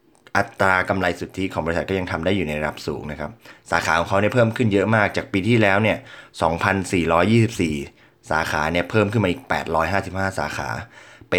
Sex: male